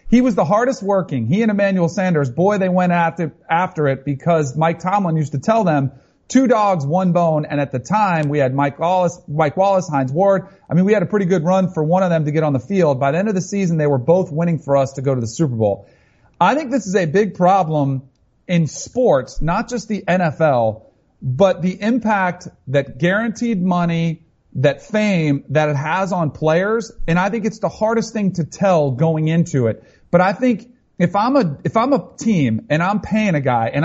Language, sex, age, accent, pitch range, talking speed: English, male, 40-59, American, 150-200 Hz, 220 wpm